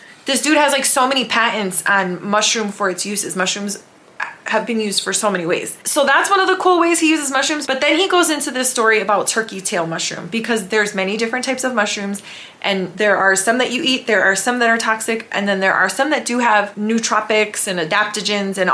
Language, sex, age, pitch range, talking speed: English, female, 20-39, 195-240 Hz, 235 wpm